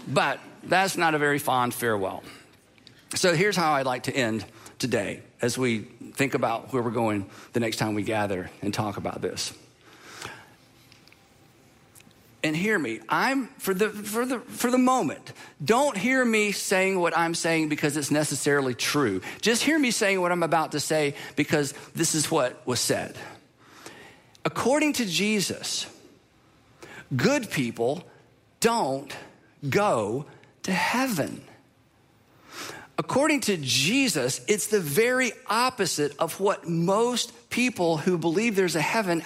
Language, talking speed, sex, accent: English, 140 wpm, male, American